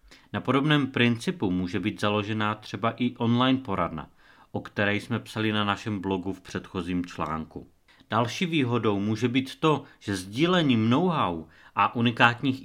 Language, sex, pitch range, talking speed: Czech, male, 100-130 Hz, 140 wpm